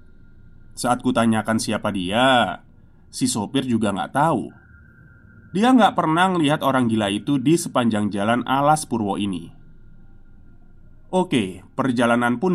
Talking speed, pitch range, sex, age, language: 125 wpm, 105-150 Hz, male, 20-39, Indonesian